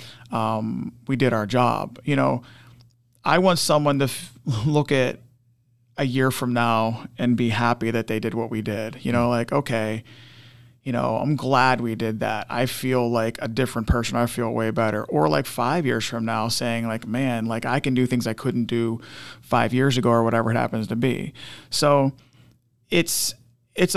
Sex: male